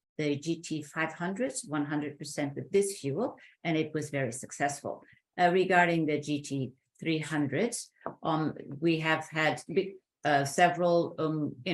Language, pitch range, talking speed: English, 140-165 Hz, 125 wpm